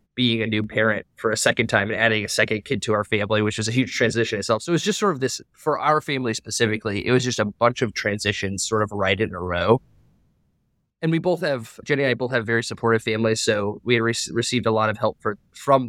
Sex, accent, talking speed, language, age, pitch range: male, American, 250 wpm, English, 20-39, 110-125 Hz